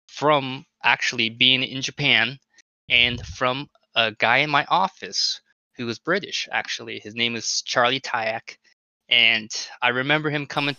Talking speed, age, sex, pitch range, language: 145 wpm, 20-39, male, 120-145 Hz, English